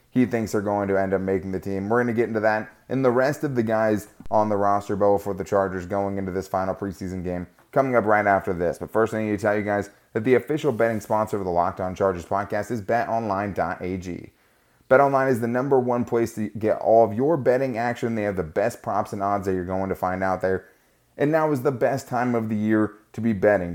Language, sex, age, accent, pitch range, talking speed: English, male, 20-39, American, 100-120 Hz, 255 wpm